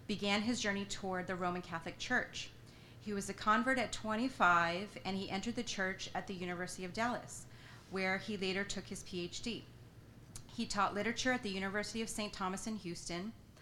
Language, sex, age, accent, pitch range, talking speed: English, female, 30-49, American, 175-210 Hz, 180 wpm